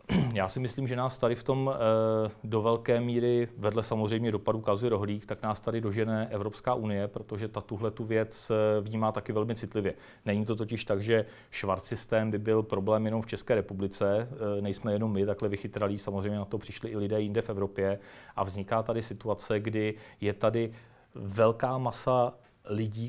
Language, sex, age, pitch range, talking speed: Czech, male, 40-59, 105-120 Hz, 180 wpm